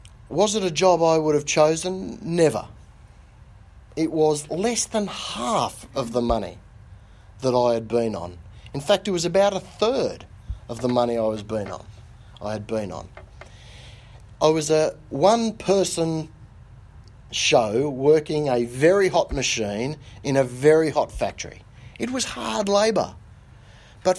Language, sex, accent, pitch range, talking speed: English, male, Australian, 105-170 Hz, 150 wpm